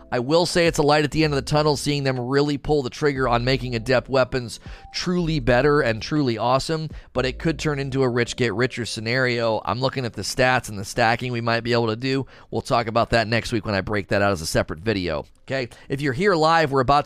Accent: American